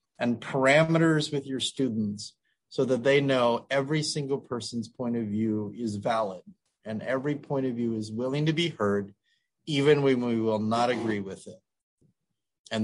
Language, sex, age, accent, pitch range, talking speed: English, male, 30-49, American, 110-135 Hz, 170 wpm